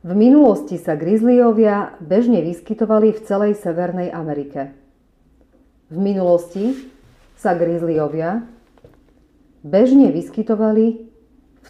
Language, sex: Slovak, female